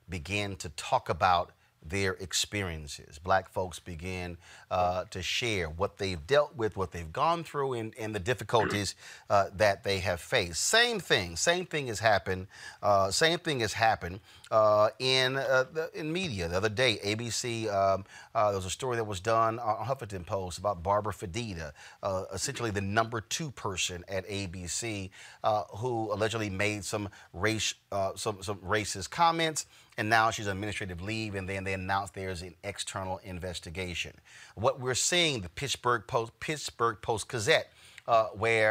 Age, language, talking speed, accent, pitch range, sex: 30-49, English, 170 wpm, American, 95-125 Hz, male